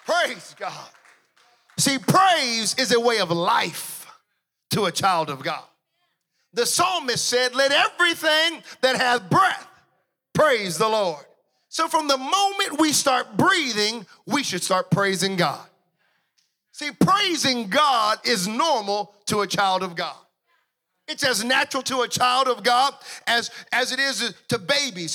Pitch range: 230-300 Hz